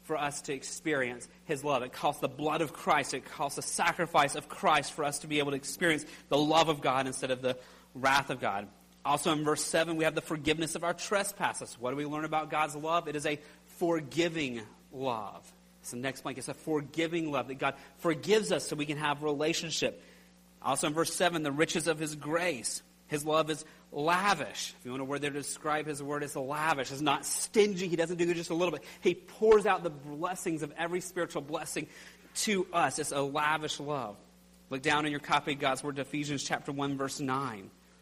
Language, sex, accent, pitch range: English, male, American, 140-170 Hz